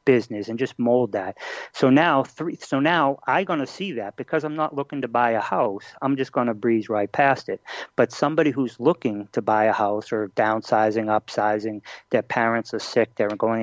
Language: English